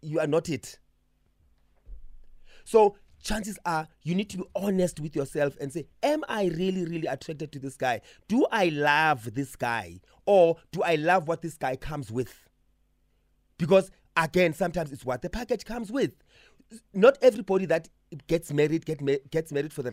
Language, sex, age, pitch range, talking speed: English, male, 30-49, 130-185 Hz, 175 wpm